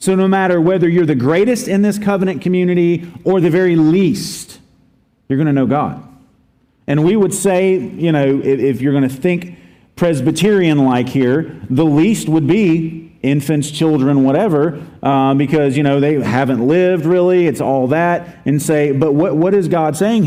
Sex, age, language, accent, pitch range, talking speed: male, 40-59, English, American, 135-175 Hz, 175 wpm